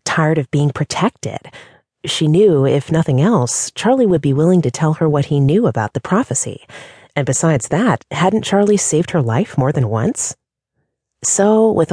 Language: English